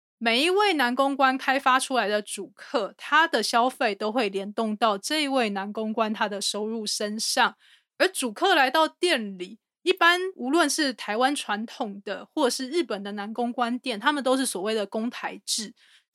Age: 20-39